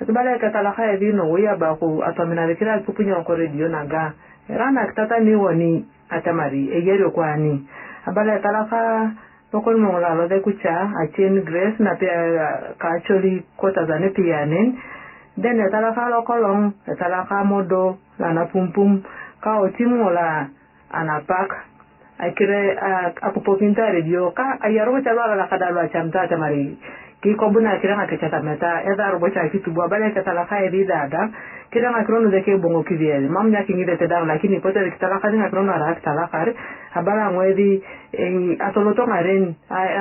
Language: English